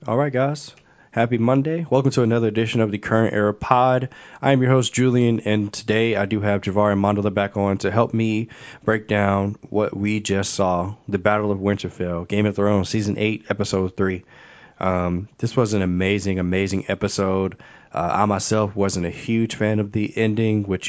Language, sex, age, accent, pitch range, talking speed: English, male, 20-39, American, 95-110 Hz, 190 wpm